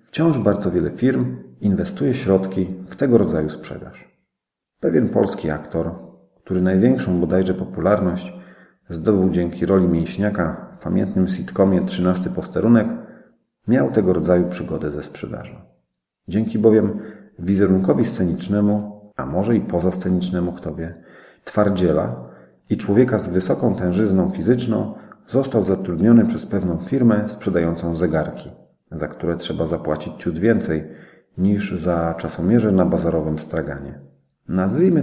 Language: Polish